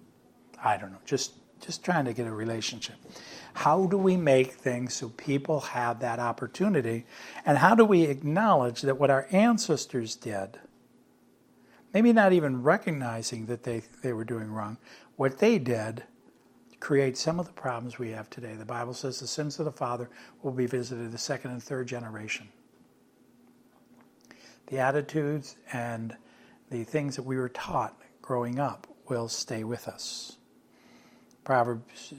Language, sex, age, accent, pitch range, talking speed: English, male, 60-79, American, 120-145 Hz, 155 wpm